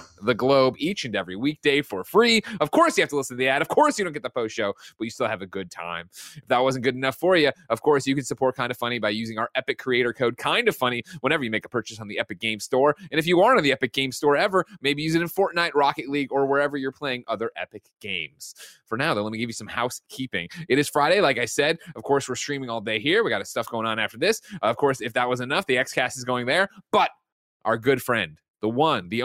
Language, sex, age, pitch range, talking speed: English, male, 30-49, 110-145 Hz, 285 wpm